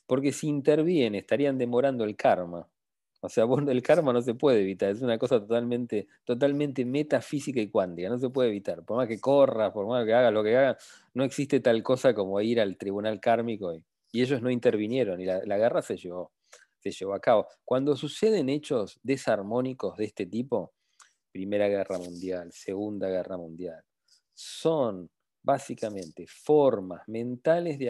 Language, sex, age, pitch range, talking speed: English, male, 40-59, 95-130 Hz, 170 wpm